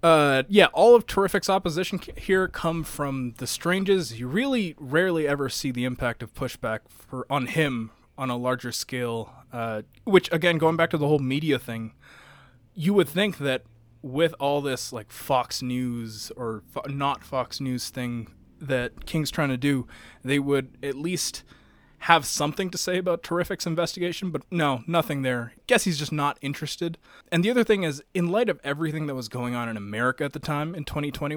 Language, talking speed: English, 185 wpm